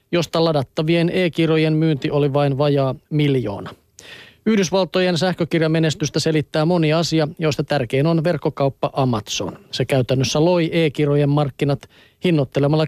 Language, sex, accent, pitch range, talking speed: Finnish, male, native, 140-170 Hz, 115 wpm